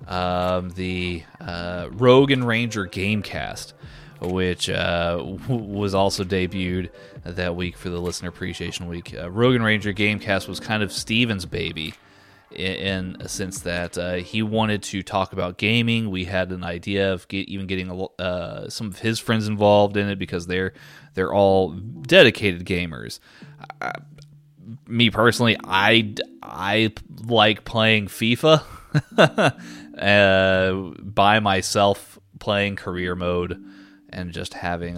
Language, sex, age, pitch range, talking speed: English, male, 30-49, 90-110 Hz, 140 wpm